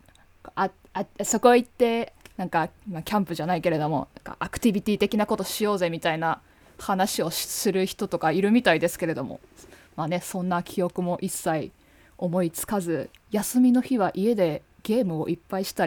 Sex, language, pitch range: female, Japanese, 165-205 Hz